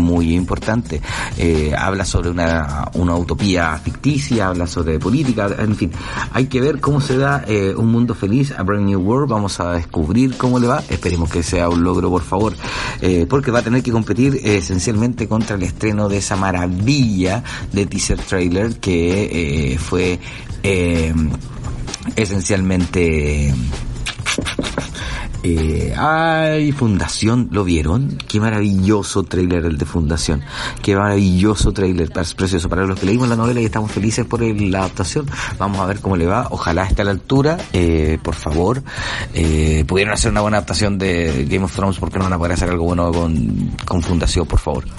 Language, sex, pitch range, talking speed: Spanish, male, 85-110 Hz, 175 wpm